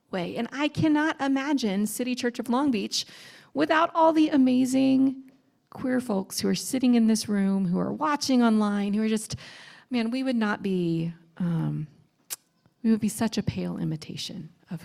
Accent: American